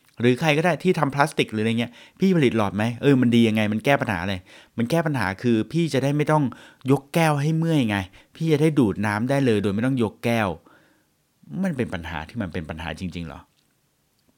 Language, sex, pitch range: Thai, male, 95-135 Hz